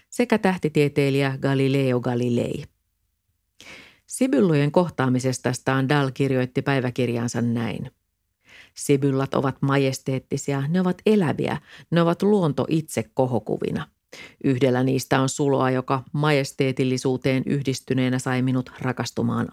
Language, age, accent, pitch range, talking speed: Finnish, 40-59, native, 130-150 Hz, 95 wpm